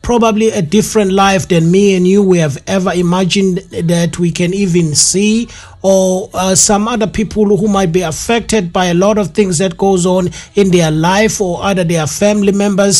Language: English